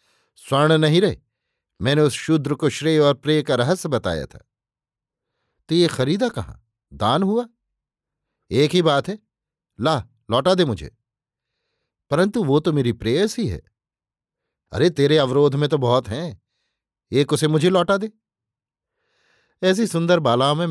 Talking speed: 150 wpm